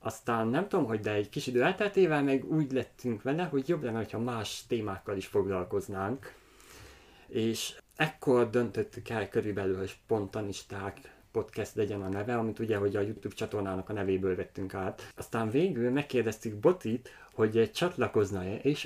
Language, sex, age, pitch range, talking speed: Hungarian, male, 30-49, 100-130 Hz, 155 wpm